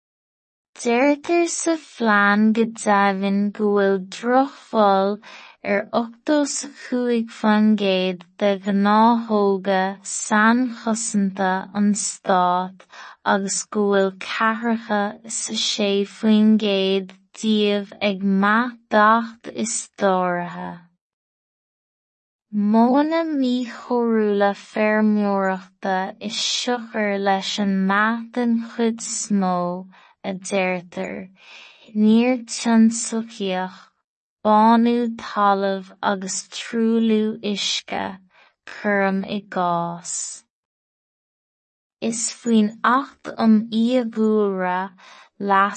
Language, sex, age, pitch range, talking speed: English, female, 20-39, 195-230 Hz, 60 wpm